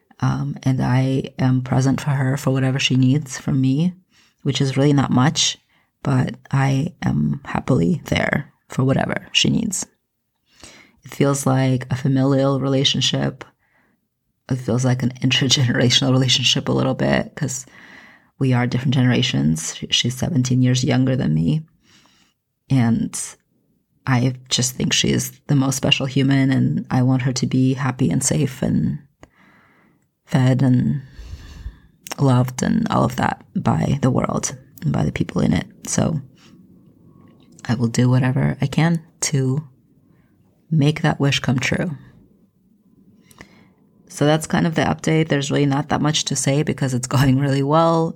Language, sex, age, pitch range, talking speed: English, female, 30-49, 130-145 Hz, 150 wpm